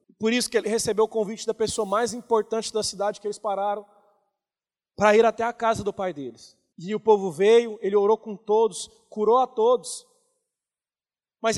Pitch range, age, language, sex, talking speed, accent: 225-300 Hz, 20-39, Portuguese, male, 185 wpm, Brazilian